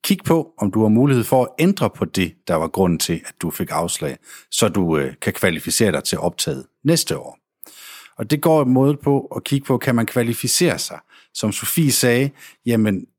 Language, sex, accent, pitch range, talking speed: Danish, male, native, 100-135 Hz, 205 wpm